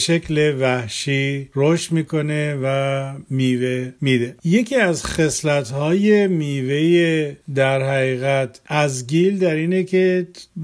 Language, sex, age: Persian, male, 50-69